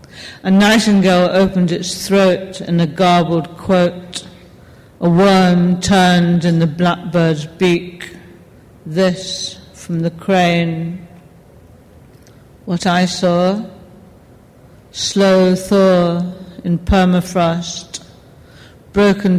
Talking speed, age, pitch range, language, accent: 85 wpm, 50-69, 170-185 Hz, English, British